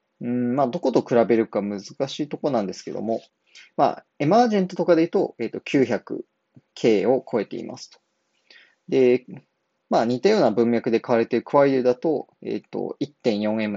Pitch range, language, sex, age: 110-135 Hz, Japanese, male, 20-39